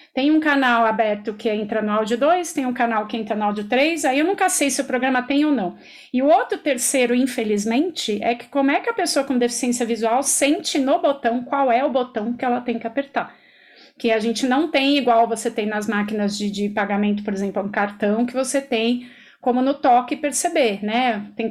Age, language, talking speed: 30-49, Portuguese, 225 wpm